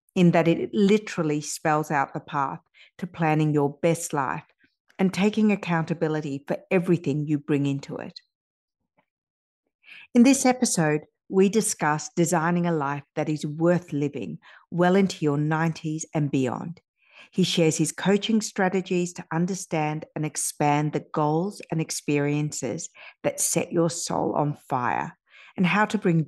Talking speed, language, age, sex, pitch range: 145 wpm, English, 50-69, female, 145-175 Hz